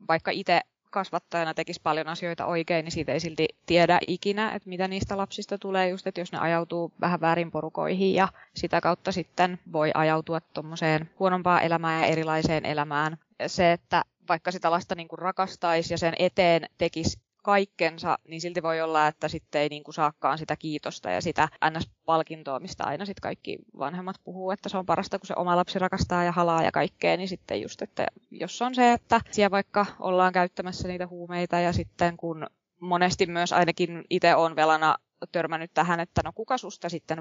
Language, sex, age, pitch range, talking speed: Finnish, female, 20-39, 165-195 Hz, 180 wpm